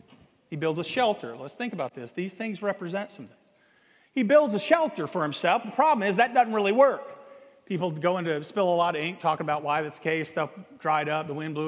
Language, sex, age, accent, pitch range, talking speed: English, male, 40-59, American, 190-275 Hz, 225 wpm